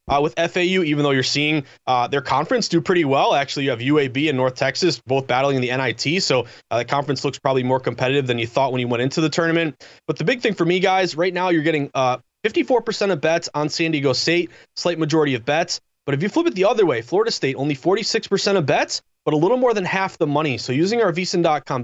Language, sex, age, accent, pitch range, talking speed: English, male, 30-49, American, 135-170 Hz, 245 wpm